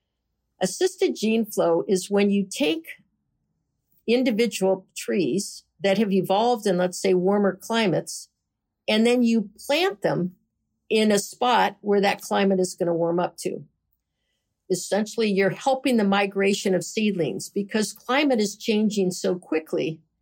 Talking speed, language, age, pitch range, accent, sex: 140 wpm, English, 60-79, 185-220 Hz, American, female